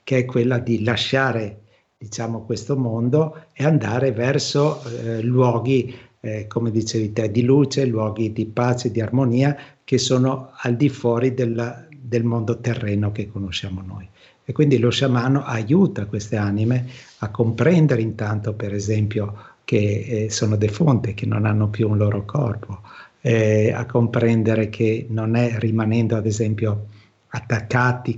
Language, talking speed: Italian, 145 wpm